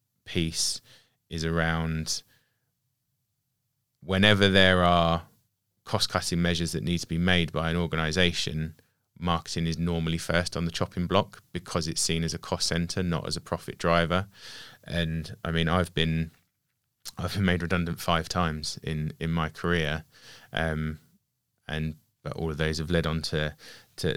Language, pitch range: English, 80-90 Hz